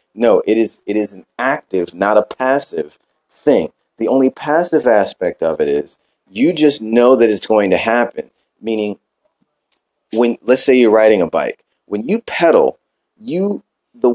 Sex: male